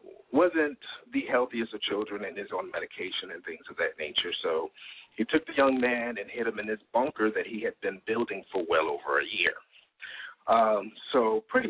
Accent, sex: American, male